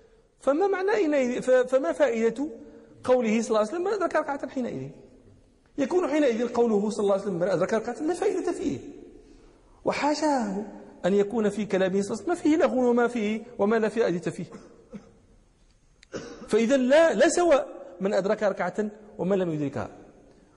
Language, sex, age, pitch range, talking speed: English, male, 40-59, 205-290 Hz, 150 wpm